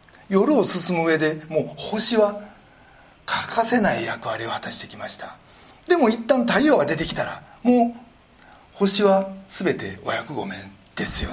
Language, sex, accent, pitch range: Japanese, male, native, 165-230 Hz